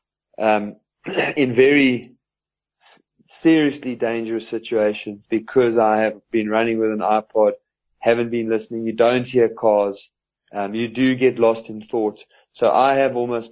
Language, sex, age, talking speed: English, male, 30-49, 140 wpm